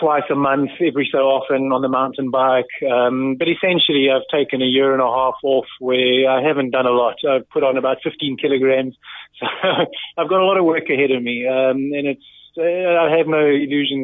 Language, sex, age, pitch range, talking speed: English, male, 20-39, 130-145 Hz, 220 wpm